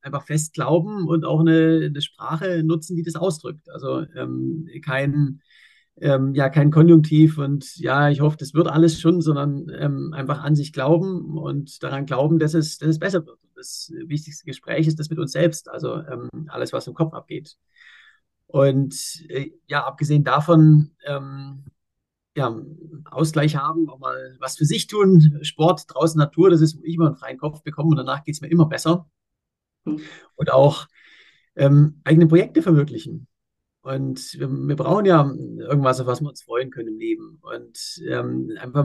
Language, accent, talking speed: German, German, 170 wpm